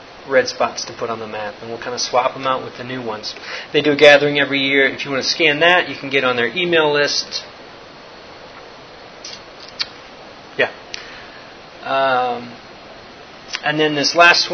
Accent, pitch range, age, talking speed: American, 130-165 Hz, 30-49, 180 wpm